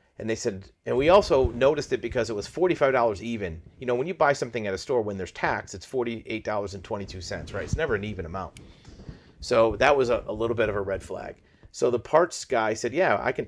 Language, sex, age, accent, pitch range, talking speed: English, male, 40-59, American, 100-125 Hz, 230 wpm